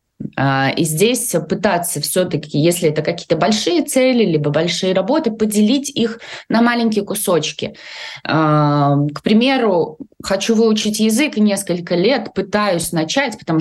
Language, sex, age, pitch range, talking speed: Russian, female, 20-39, 160-220 Hz, 130 wpm